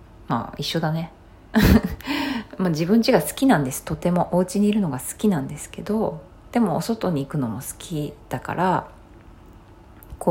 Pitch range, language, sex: 115-190 Hz, Japanese, female